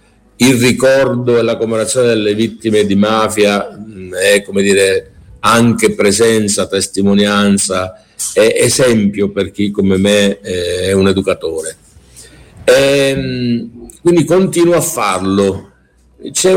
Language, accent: Italian, native